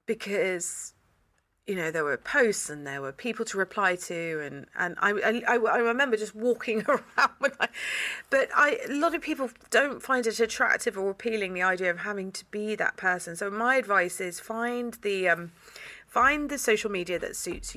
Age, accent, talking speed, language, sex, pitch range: 30-49, British, 195 wpm, English, female, 180-245 Hz